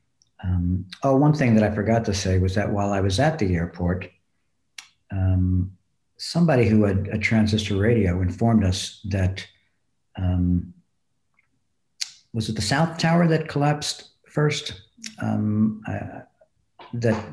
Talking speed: 130 wpm